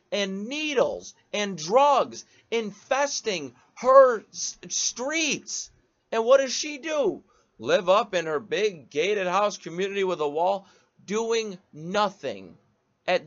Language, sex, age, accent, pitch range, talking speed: English, male, 30-49, American, 145-225 Hz, 120 wpm